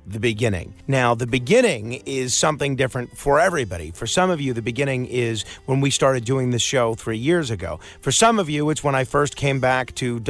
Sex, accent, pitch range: male, American, 120-165 Hz